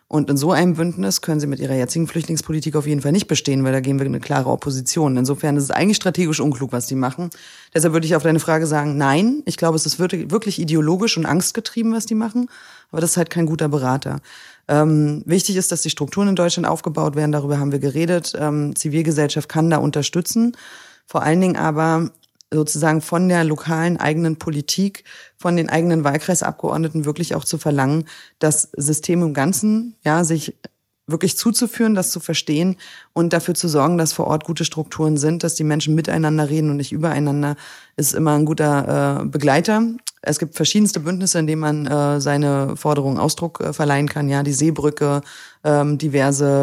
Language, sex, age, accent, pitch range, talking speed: German, female, 30-49, German, 145-170 Hz, 190 wpm